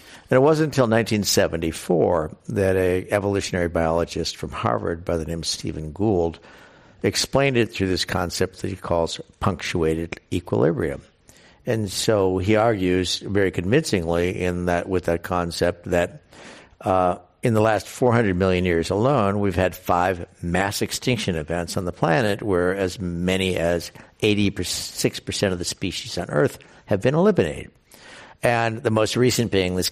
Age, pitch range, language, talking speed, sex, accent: 60-79, 85-105 Hz, English, 150 wpm, male, American